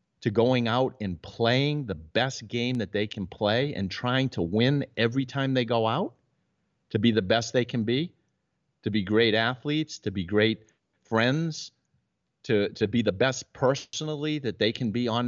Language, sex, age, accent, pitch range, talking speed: English, male, 50-69, American, 105-135 Hz, 185 wpm